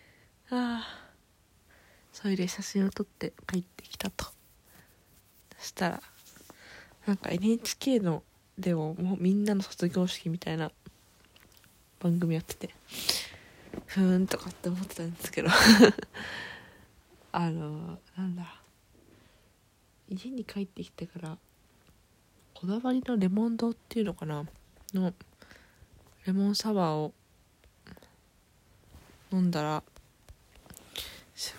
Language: Japanese